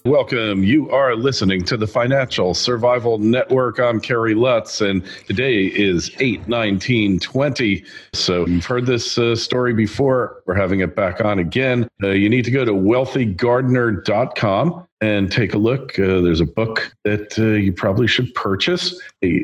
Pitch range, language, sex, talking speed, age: 95-120 Hz, English, male, 155 wpm, 50-69